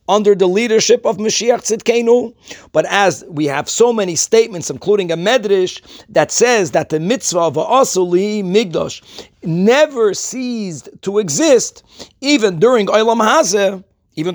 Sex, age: male, 50-69